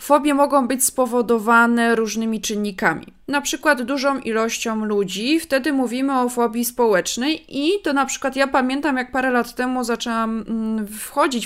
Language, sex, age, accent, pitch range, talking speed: Polish, female, 20-39, native, 215-275 Hz, 145 wpm